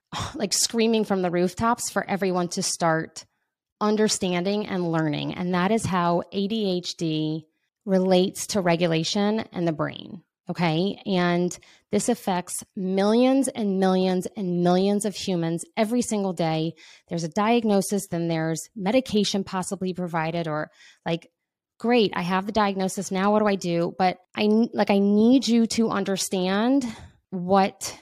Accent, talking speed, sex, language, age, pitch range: American, 140 wpm, female, English, 20-39, 175-205 Hz